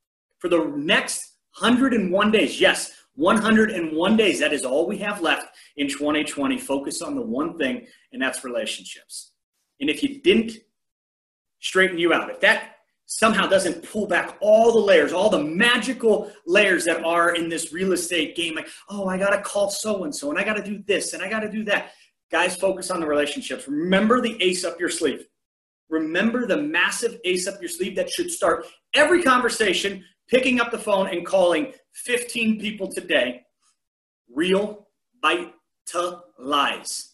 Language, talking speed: English, 170 wpm